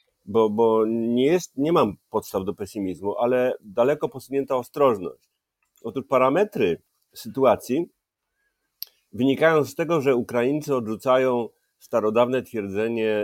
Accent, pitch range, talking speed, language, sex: native, 110-135 Hz, 110 wpm, Polish, male